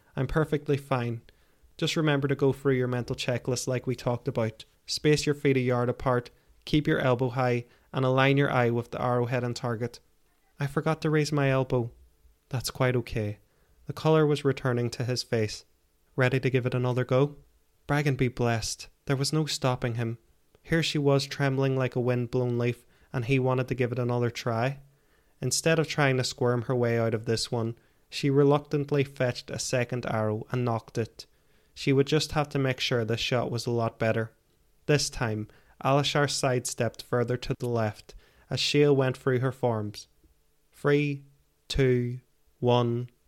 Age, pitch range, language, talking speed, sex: 20-39, 115-140 Hz, English, 180 wpm, male